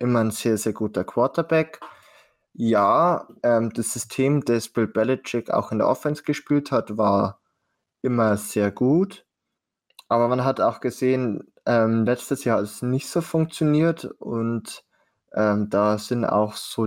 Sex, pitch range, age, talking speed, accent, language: male, 110-130 Hz, 20-39, 150 wpm, German, German